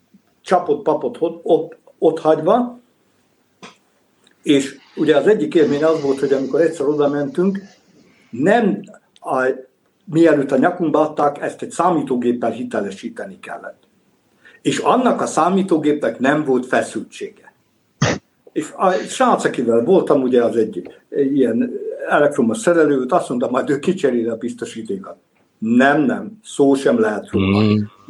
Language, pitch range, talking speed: Hungarian, 135-200 Hz, 120 wpm